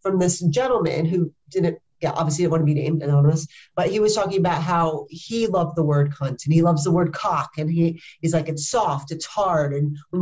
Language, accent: English, American